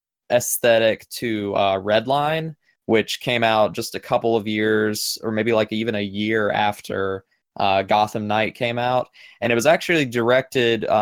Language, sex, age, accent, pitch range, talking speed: English, male, 20-39, American, 110-125 Hz, 165 wpm